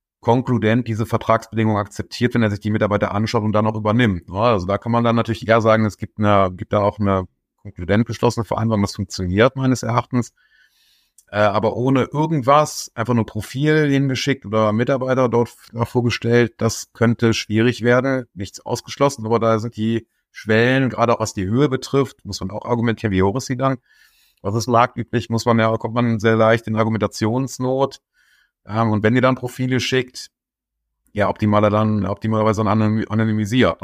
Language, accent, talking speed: German, German, 175 wpm